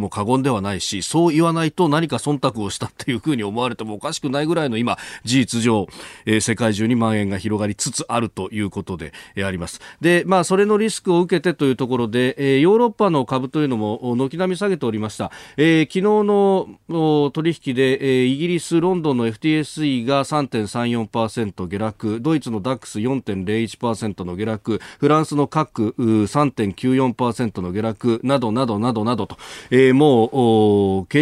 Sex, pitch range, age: male, 110-145 Hz, 40-59